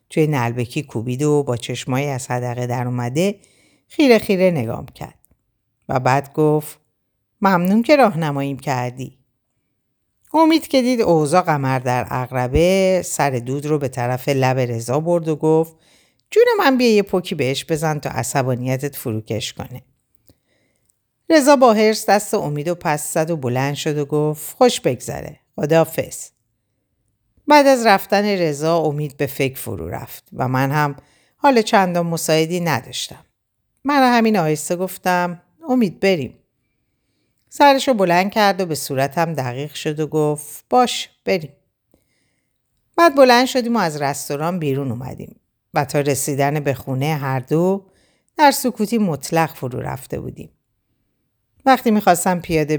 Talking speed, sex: 140 wpm, female